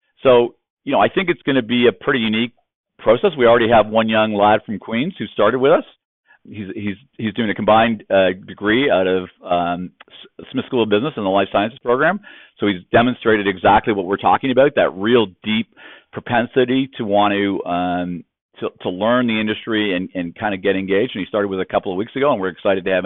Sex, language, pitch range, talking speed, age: male, English, 105-130 Hz, 225 wpm, 50-69